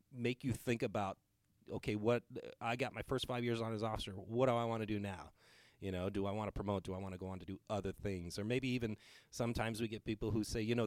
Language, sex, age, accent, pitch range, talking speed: English, male, 30-49, American, 95-115 Hz, 275 wpm